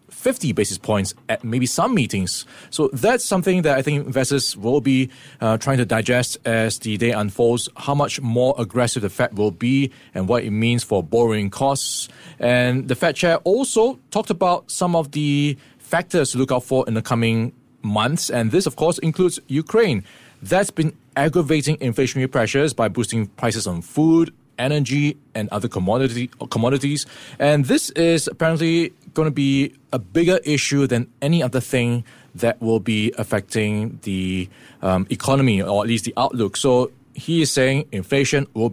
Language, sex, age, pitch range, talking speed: English, male, 20-39, 115-145 Hz, 170 wpm